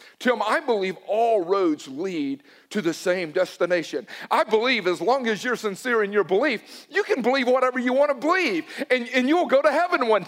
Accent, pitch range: American, 210-295 Hz